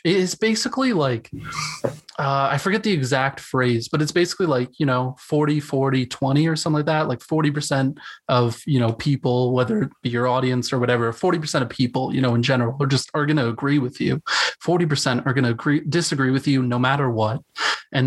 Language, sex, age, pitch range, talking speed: English, male, 20-39, 125-150 Hz, 205 wpm